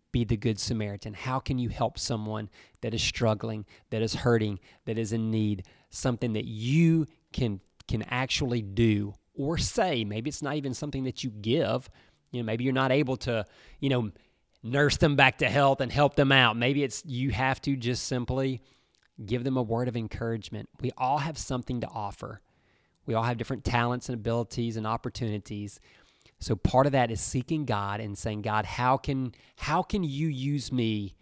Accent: American